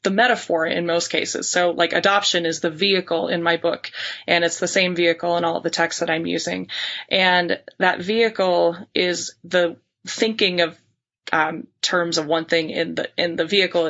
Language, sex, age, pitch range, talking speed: English, female, 20-39, 170-205 Hz, 190 wpm